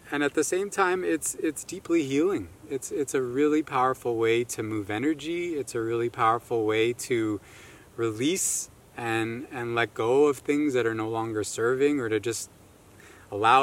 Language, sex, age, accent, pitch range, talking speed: English, male, 20-39, American, 110-145 Hz, 175 wpm